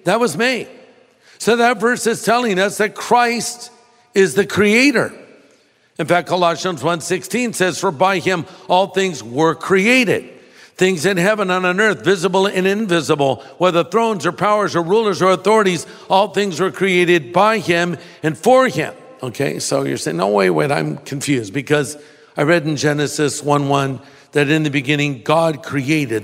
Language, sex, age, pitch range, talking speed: English, male, 60-79, 150-205 Hz, 165 wpm